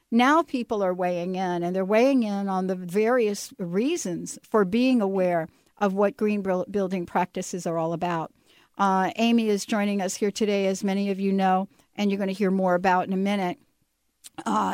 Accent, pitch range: American, 180-210 Hz